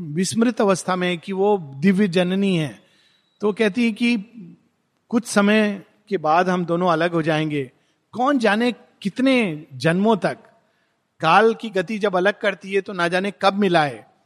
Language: Hindi